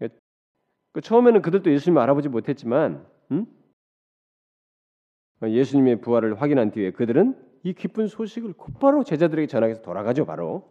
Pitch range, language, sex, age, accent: 140-210 Hz, Korean, male, 40-59, native